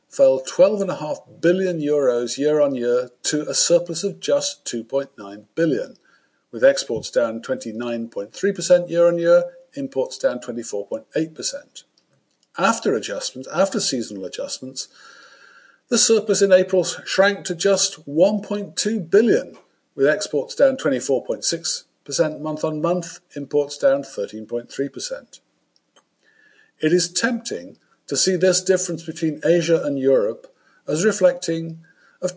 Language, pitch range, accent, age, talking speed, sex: English, 145-200 Hz, British, 50-69, 115 wpm, male